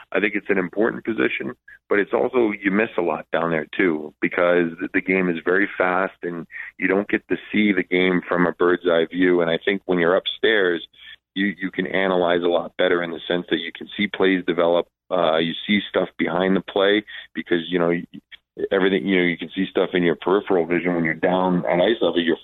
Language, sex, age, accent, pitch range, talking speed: English, male, 40-59, American, 85-95 Hz, 225 wpm